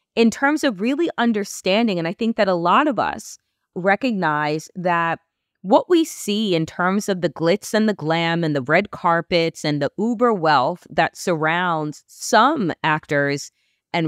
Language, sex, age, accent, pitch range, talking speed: English, female, 30-49, American, 175-255 Hz, 165 wpm